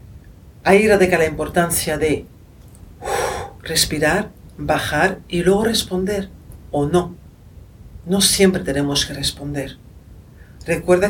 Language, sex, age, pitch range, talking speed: Spanish, female, 50-69, 135-185 Hz, 95 wpm